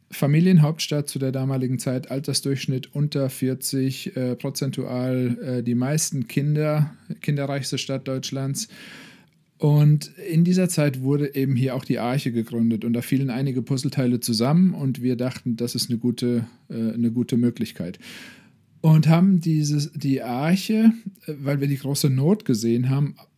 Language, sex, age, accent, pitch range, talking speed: German, male, 40-59, German, 125-150 Hz, 140 wpm